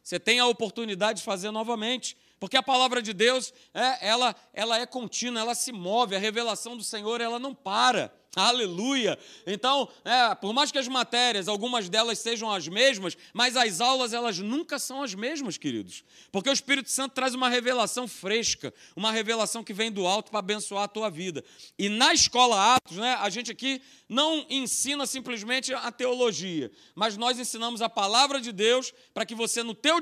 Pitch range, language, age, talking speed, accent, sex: 215-260 Hz, Portuguese, 40-59, 180 wpm, Brazilian, male